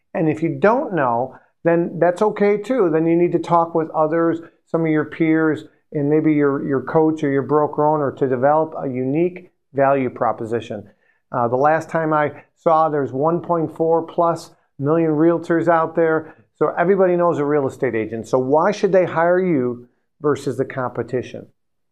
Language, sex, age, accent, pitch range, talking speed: English, male, 50-69, American, 145-180 Hz, 175 wpm